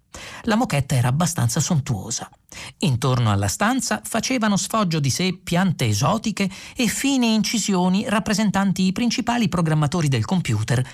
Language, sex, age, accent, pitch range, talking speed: Italian, male, 40-59, native, 125-185 Hz, 125 wpm